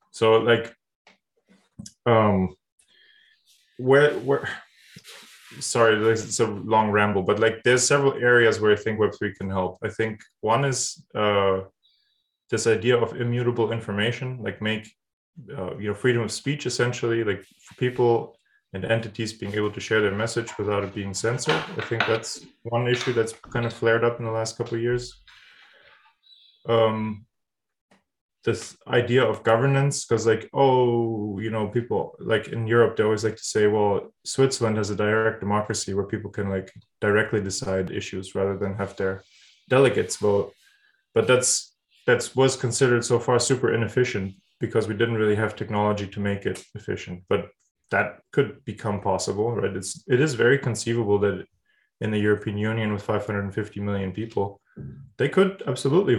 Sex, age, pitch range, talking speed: male, 20-39, 105-120 Hz, 160 wpm